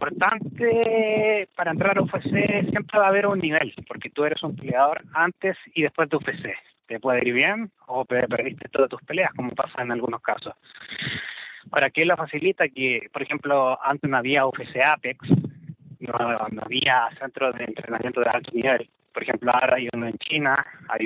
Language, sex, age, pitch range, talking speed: Spanish, male, 30-49, 125-160 Hz, 180 wpm